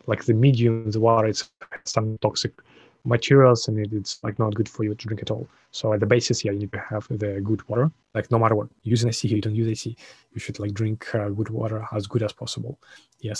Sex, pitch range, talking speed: male, 110-120 Hz, 240 wpm